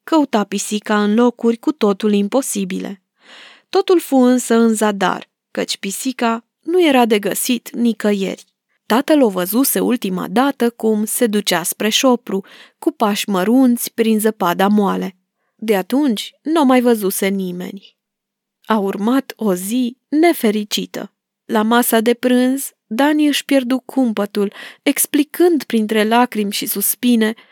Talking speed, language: 130 wpm, Romanian